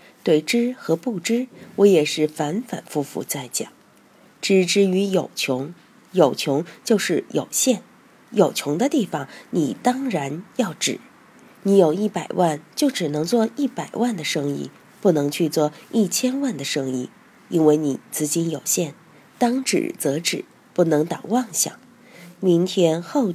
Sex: female